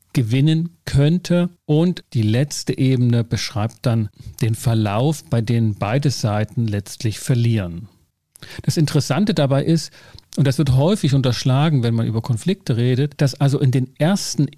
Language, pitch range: German, 120-145 Hz